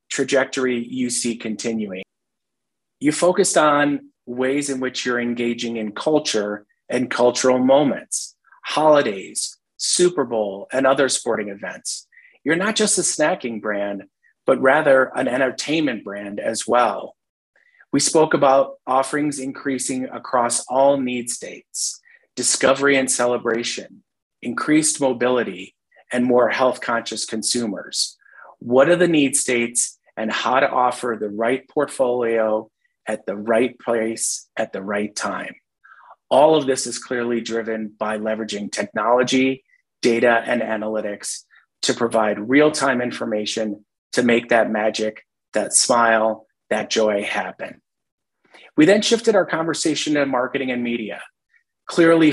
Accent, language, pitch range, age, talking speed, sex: American, English, 110-140 Hz, 30-49, 125 wpm, male